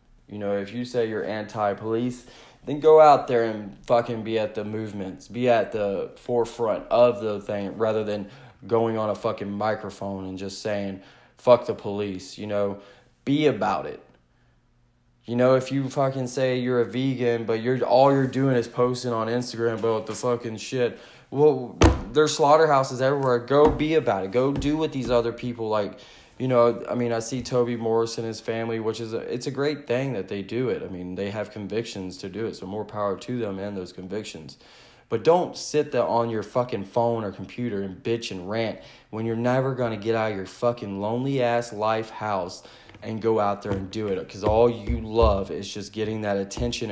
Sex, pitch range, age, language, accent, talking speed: male, 105-125 Hz, 20-39, English, American, 205 wpm